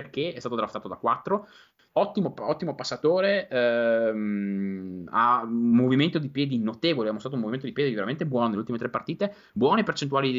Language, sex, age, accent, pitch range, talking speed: Italian, male, 20-39, native, 120-180 Hz, 175 wpm